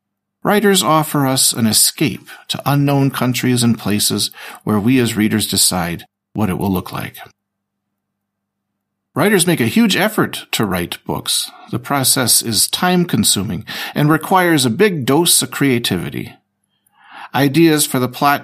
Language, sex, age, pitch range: Slovak, male, 50-69, 105-165 Hz